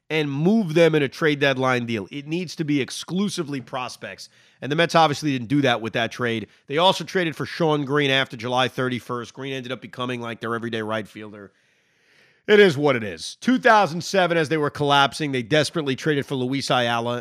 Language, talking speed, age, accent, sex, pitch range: English, 200 wpm, 30-49, American, male, 125-180 Hz